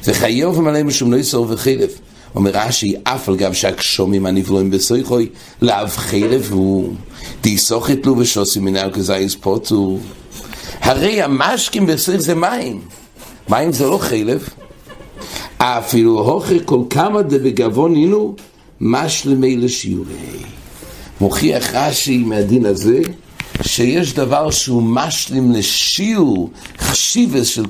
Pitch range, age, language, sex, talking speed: 105-140 Hz, 60-79, English, male, 85 wpm